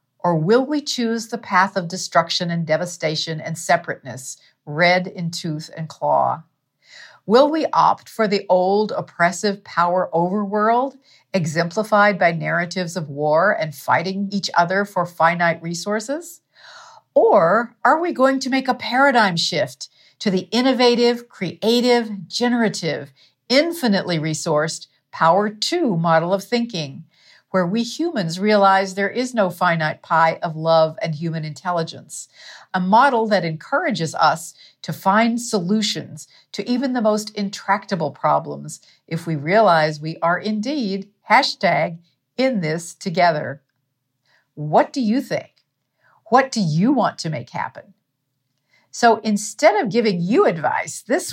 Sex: female